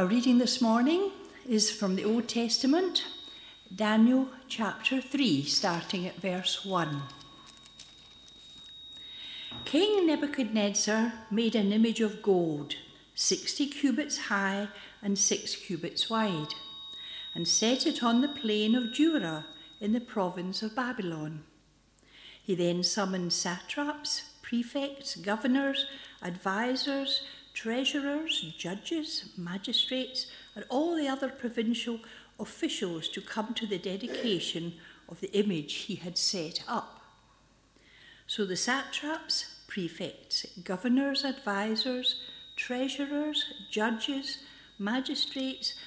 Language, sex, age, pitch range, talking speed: English, female, 60-79, 185-265 Hz, 105 wpm